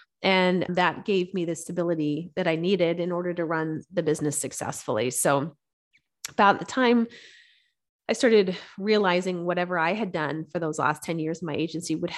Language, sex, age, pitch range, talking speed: English, female, 30-49, 160-210 Hz, 175 wpm